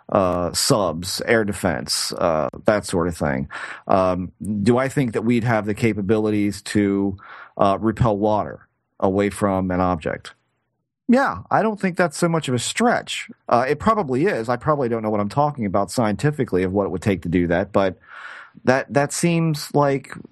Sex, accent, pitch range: male, American, 95-120 Hz